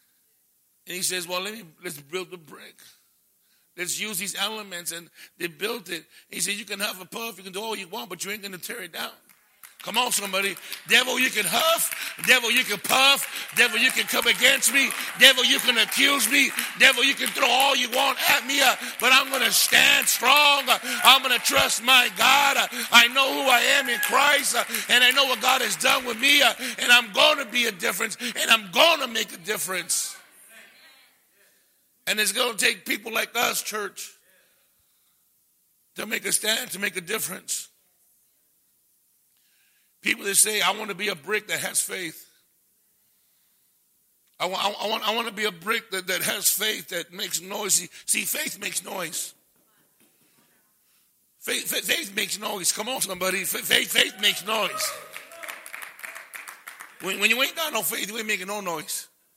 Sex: male